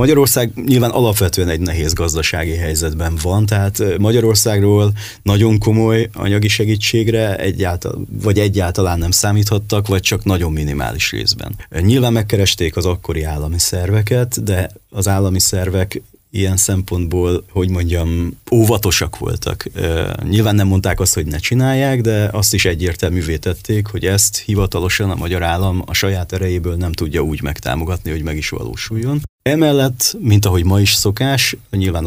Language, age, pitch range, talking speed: Hungarian, 30-49, 85-105 Hz, 140 wpm